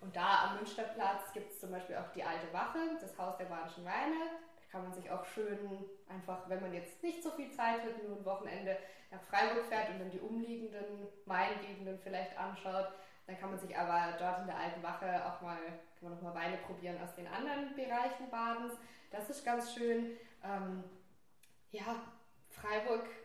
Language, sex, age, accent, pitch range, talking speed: German, female, 10-29, German, 190-235 Hz, 195 wpm